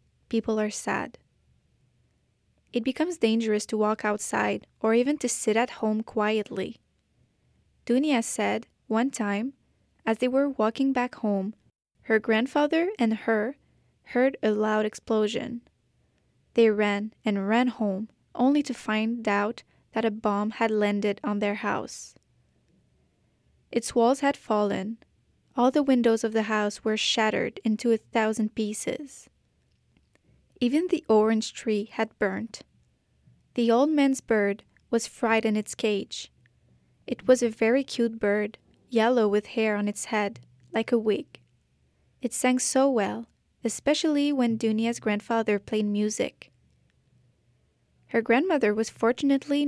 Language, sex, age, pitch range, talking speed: French, female, 10-29, 215-245 Hz, 135 wpm